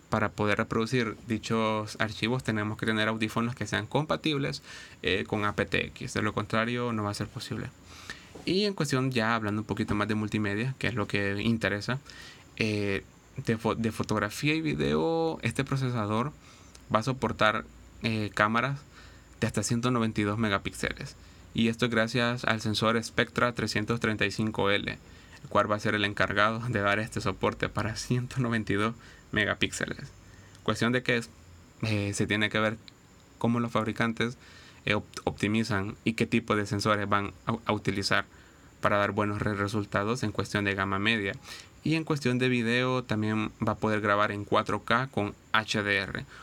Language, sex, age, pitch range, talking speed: Spanish, male, 20-39, 105-120 Hz, 160 wpm